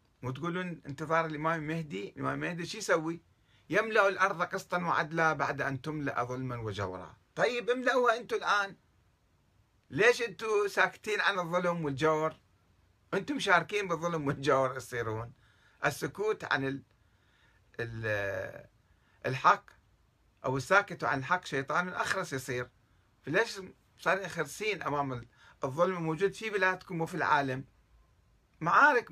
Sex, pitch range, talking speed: male, 125-180 Hz, 110 wpm